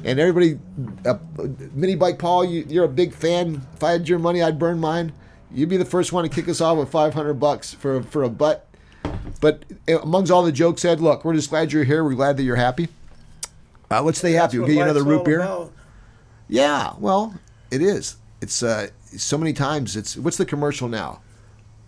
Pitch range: 105-155 Hz